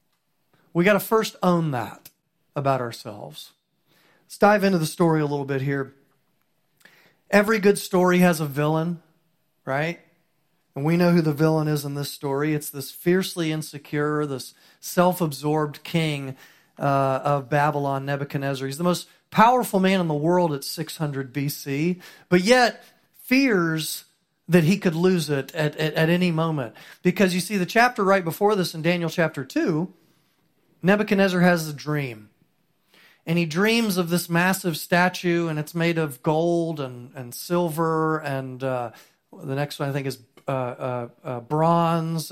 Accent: American